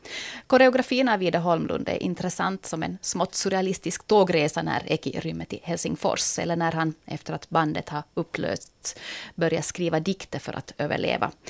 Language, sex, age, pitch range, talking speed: Swedish, female, 30-49, 150-195 Hz, 155 wpm